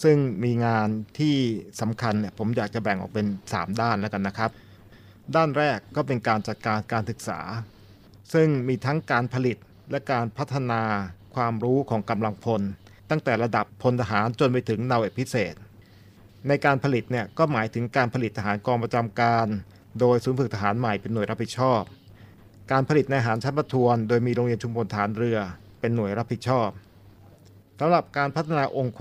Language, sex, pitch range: Thai, male, 105-130 Hz